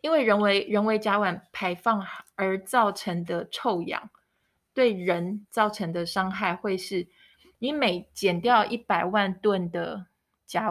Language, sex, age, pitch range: Chinese, female, 20-39, 180-230 Hz